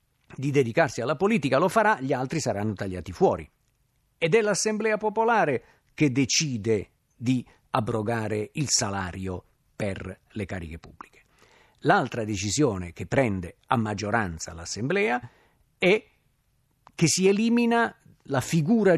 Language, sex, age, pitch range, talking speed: Italian, male, 50-69, 110-160 Hz, 120 wpm